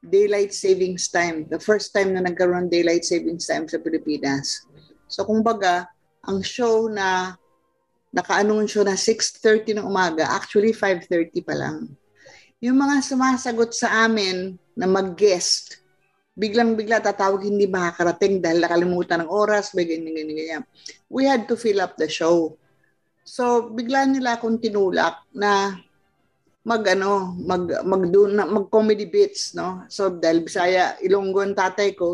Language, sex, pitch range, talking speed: Filipino, female, 175-215 Hz, 130 wpm